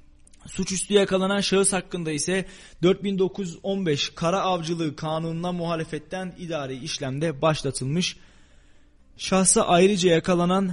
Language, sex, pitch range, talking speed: Turkish, male, 145-185 Hz, 90 wpm